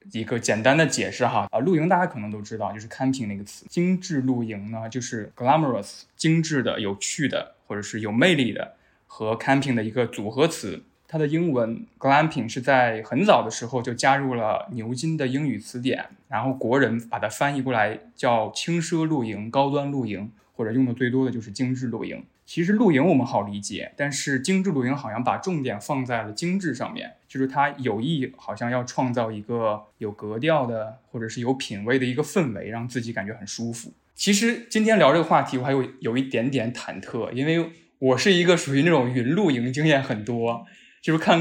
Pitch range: 110-145 Hz